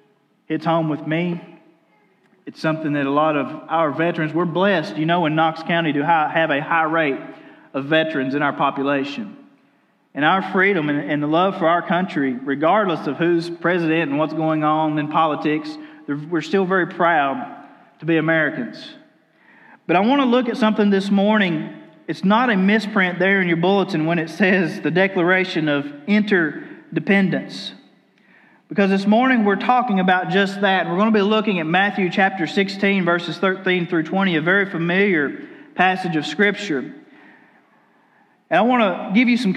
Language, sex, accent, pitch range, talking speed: English, male, American, 165-215 Hz, 170 wpm